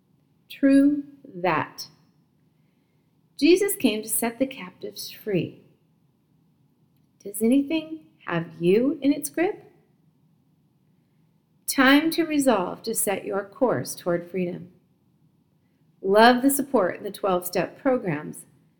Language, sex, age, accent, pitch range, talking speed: English, female, 40-59, American, 170-265 Hz, 100 wpm